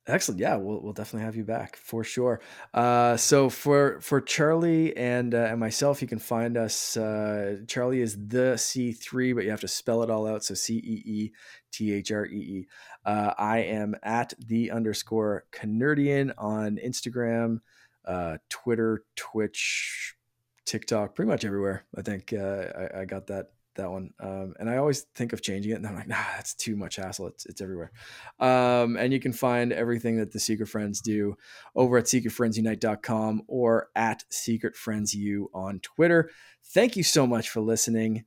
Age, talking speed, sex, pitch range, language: 20-39, 180 wpm, male, 110-145 Hz, English